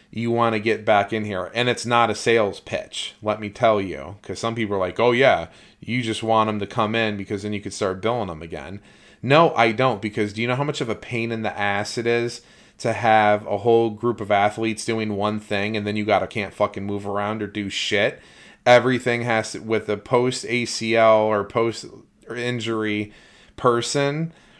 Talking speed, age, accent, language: 215 wpm, 30-49, American, English